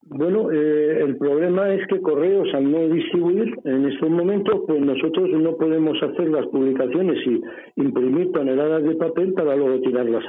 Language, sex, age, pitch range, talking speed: Spanish, male, 60-79, 125-165 Hz, 165 wpm